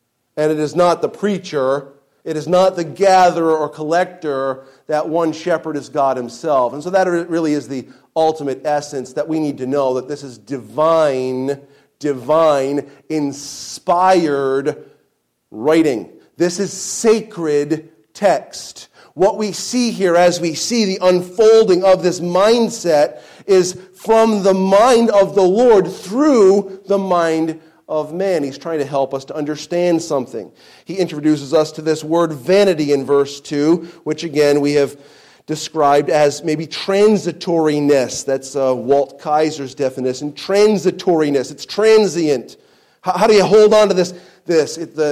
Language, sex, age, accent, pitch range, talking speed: English, male, 40-59, American, 145-185 Hz, 150 wpm